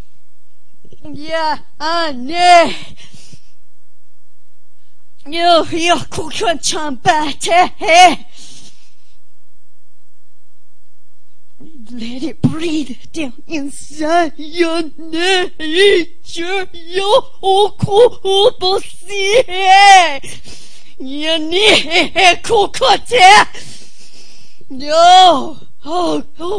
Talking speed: 55 wpm